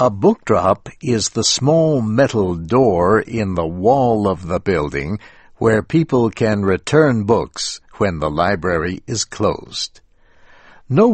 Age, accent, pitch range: 60-79, American, 100-140 Hz